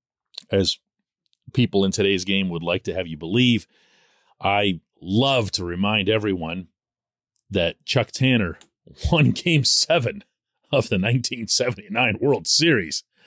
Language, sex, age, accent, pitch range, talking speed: English, male, 40-59, American, 90-110 Hz, 120 wpm